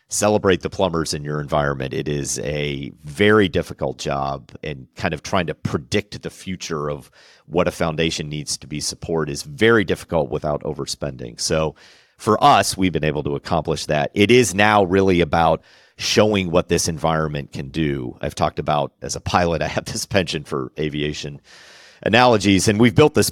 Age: 40-59